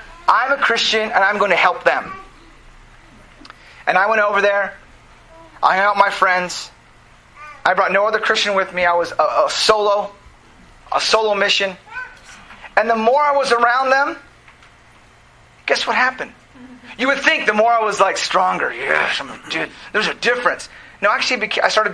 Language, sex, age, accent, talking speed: English, male, 30-49, American, 170 wpm